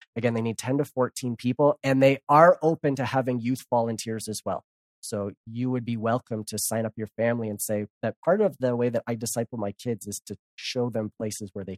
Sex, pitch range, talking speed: male, 105-130 Hz, 235 wpm